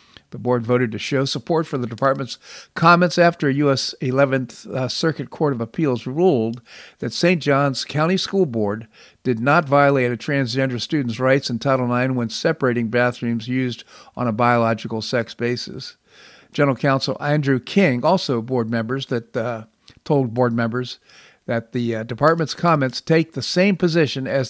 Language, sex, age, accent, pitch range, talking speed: English, male, 50-69, American, 120-145 Hz, 160 wpm